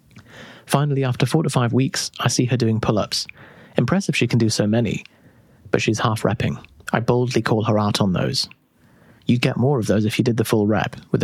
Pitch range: 105-125 Hz